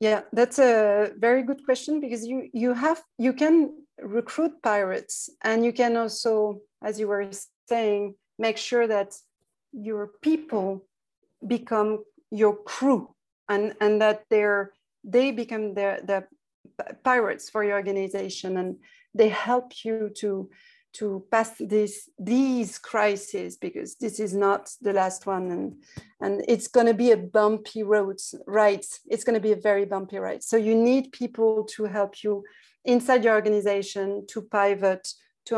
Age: 40-59